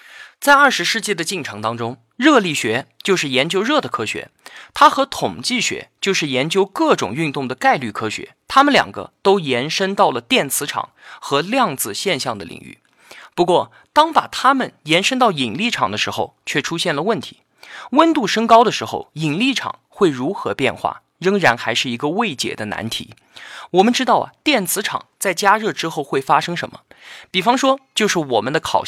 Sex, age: male, 20-39